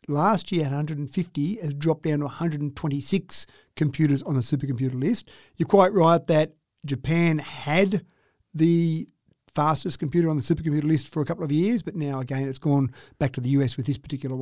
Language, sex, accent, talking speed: English, male, Australian, 180 wpm